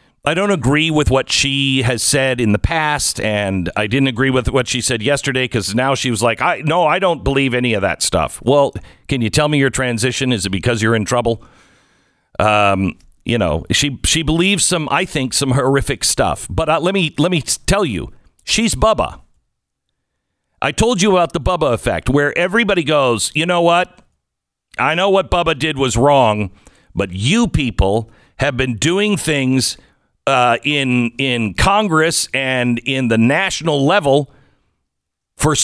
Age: 50-69